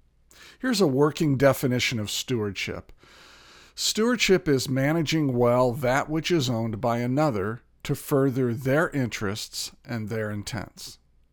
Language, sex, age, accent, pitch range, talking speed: English, male, 50-69, American, 120-160 Hz, 120 wpm